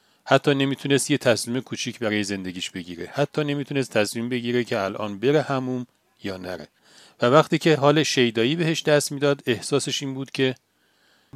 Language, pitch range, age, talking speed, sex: Persian, 105-150 Hz, 40-59, 160 wpm, male